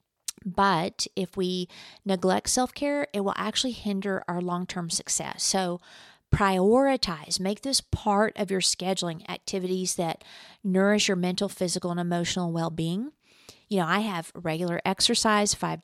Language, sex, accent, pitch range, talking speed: English, female, American, 180-210 Hz, 135 wpm